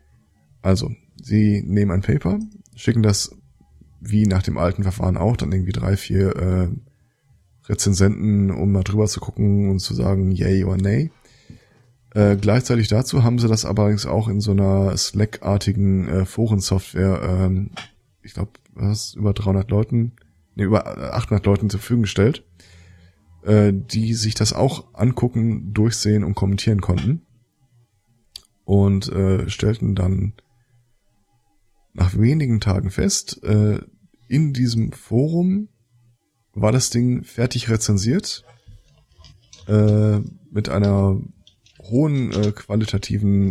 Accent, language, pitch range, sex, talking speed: German, German, 95-120 Hz, male, 125 wpm